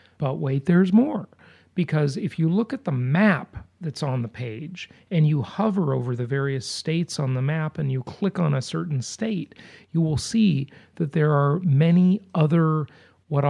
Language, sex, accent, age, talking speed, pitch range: English, male, American, 40-59, 180 wpm, 135-170 Hz